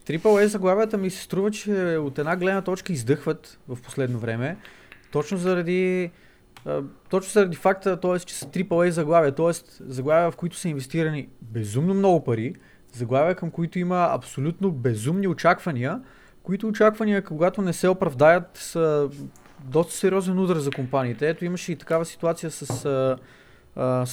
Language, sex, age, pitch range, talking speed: Bulgarian, male, 20-39, 140-185 Hz, 150 wpm